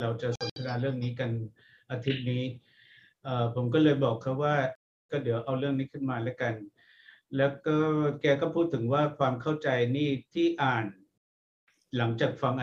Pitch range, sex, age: 125-155 Hz, male, 60-79